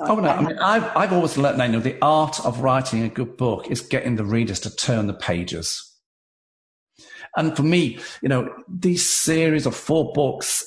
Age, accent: 50-69, British